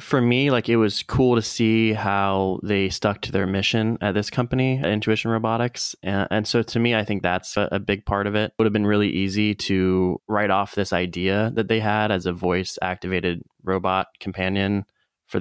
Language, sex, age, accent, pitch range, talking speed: English, male, 20-39, American, 90-110 Hz, 205 wpm